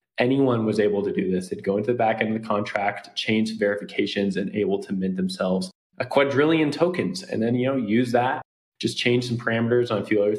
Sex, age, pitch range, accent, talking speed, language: male, 20-39, 100-125 Hz, American, 225 wpm, English